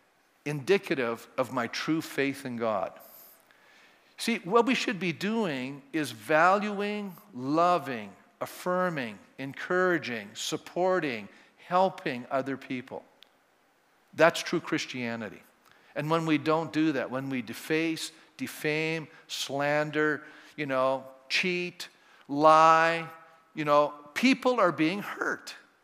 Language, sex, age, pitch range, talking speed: English, male, 50-69, 135-180 Hz, 105 wpm